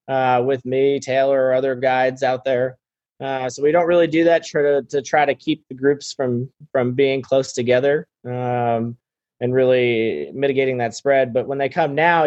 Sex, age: male, 20-39